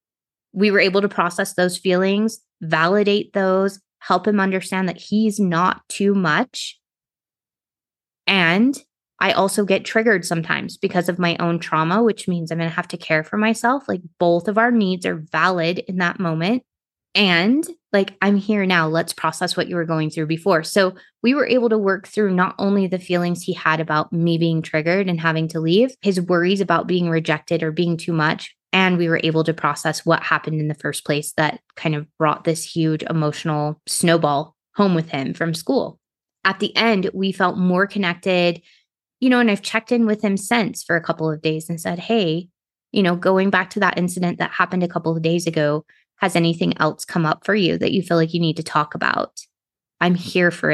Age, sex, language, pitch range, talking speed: 20-39, female, English, 165-200 Hz, 205 wpm